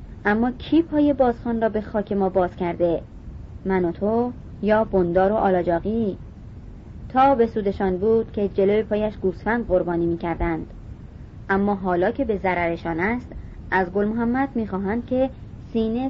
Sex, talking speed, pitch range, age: male, 150 wpm, 175-220 Hz, 30-49